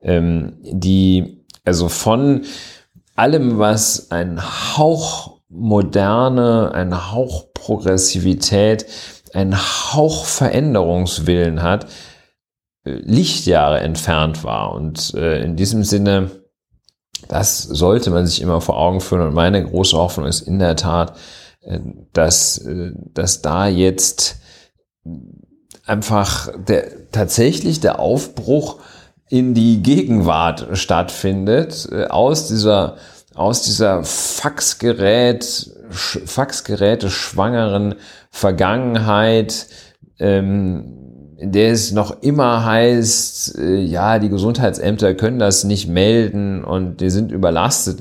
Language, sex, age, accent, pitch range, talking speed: German, male, 40-59, German, 90-110 Hz, 95 wpm